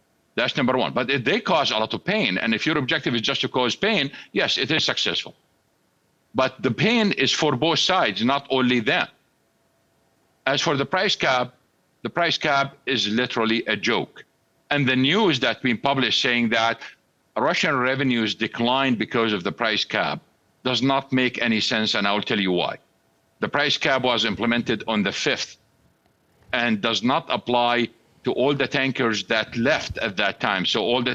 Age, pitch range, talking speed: 50-69, 120-160 Hz, 185 wpm